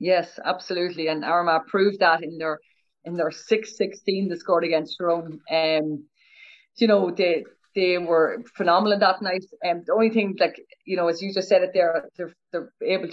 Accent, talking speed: Irish, 190 wpm